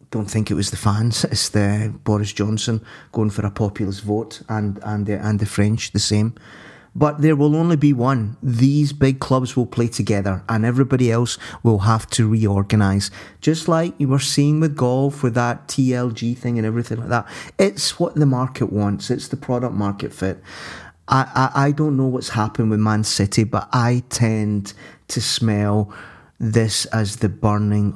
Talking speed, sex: 185 wpm, male